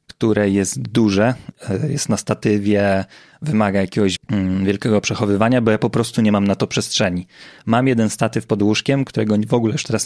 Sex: male